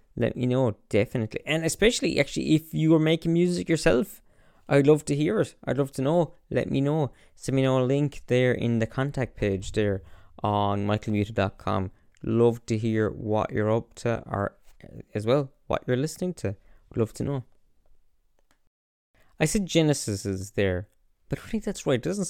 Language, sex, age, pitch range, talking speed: English, male, 20-39, 110-160 Hz, 185 wpm